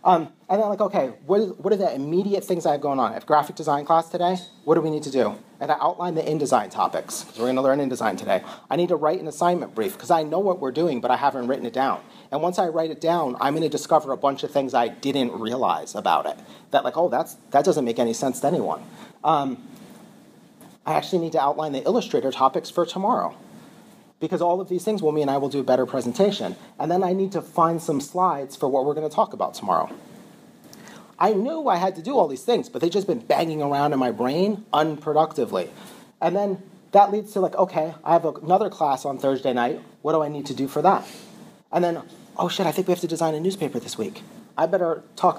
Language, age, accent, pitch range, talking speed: English, 40-59, American, 155-200 Hz, 245 wpm